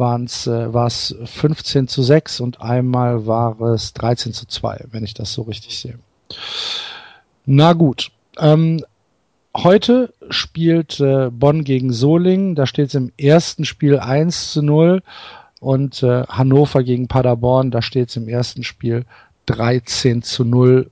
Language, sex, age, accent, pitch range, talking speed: German, male, 50-69, German, 120-155 Hz, 145 wpm